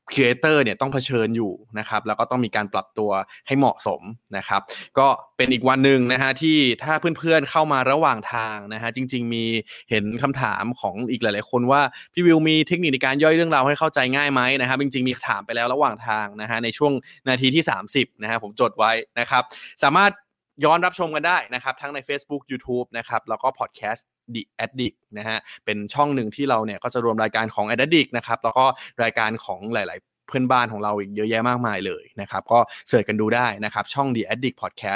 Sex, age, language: male, 20-39, Thai